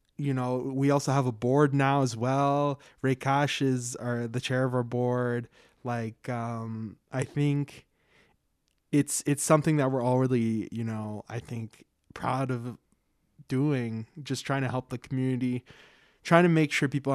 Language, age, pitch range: English, 20-39, 120-140 Hz